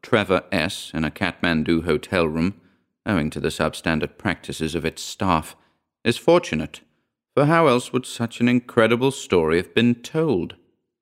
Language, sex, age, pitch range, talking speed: English, male, 40-59, 85-120 Hz, 150 wpm